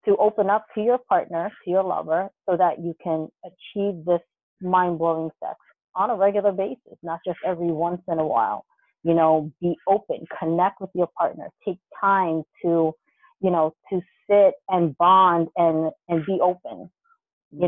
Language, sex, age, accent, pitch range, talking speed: English, female, 30-49, American, 165-200 Hz, 170 wpm